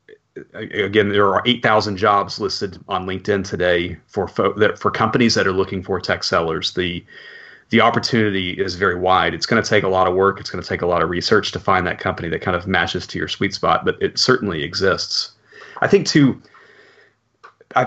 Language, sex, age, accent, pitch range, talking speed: English, male, 30-49, American, 95-115 Hz, 210 wpm